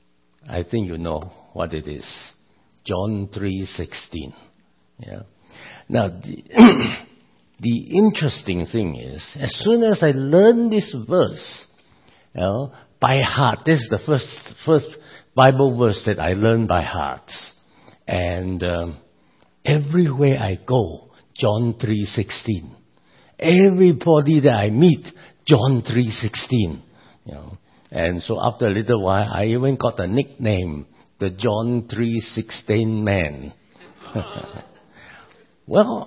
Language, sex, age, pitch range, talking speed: English, male, 60-79, 90-140 Hz, 120 wpm